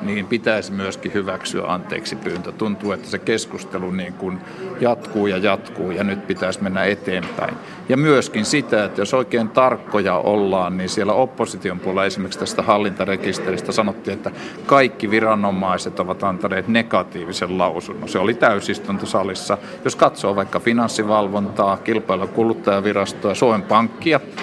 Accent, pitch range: native, 100-130 Hz